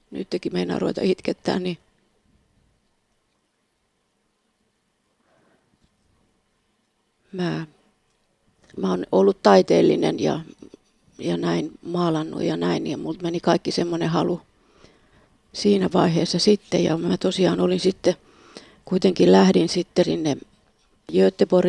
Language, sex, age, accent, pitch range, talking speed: Finnish, female, 30-49, native, 160-190 Hz, 90 wpm